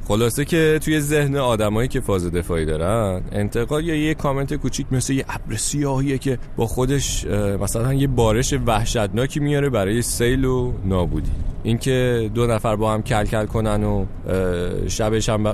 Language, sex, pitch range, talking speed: Persian, male, 95-125 Hz, 160 wpm